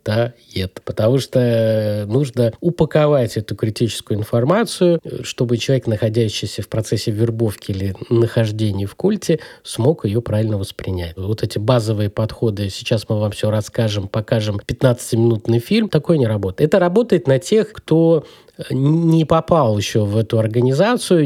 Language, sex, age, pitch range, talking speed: Russian, male, 20-39, 110-145 Hz, 140 wpm